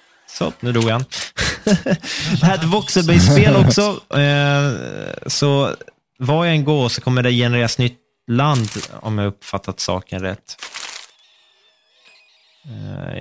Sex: male